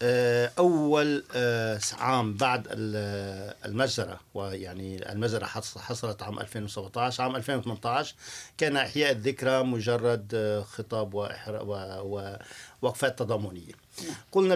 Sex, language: male, Arabic